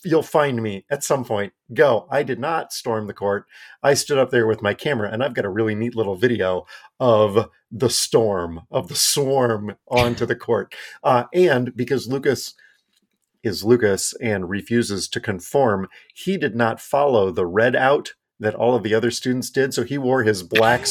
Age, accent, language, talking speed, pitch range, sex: 40-59, American, English, 190 wpm, 105-130 Hz, male